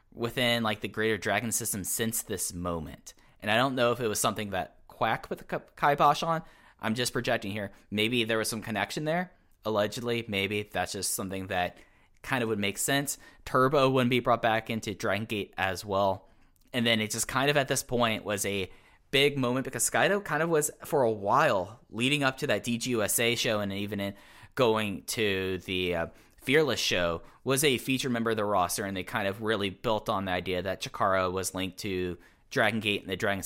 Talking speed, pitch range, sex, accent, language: 210 wpm, 95-120 Hz, male, American, English